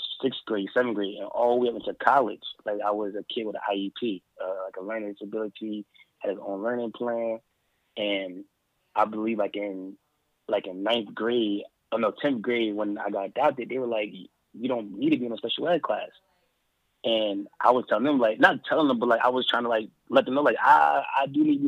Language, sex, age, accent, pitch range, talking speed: English, male, 20-39, American, 100-120 Hz, 235 wpm